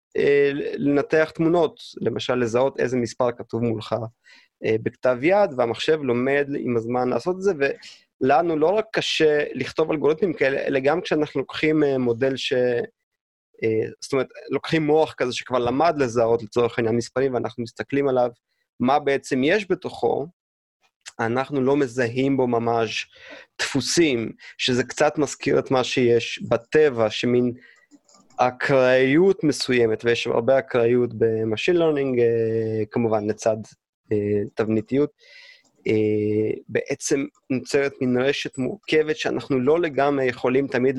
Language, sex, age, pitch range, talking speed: Hebrew, male, 30-49, 115-140 Hz, 120 wpm